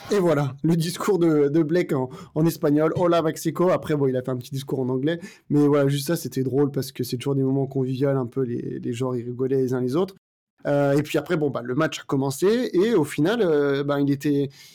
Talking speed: 255 wpm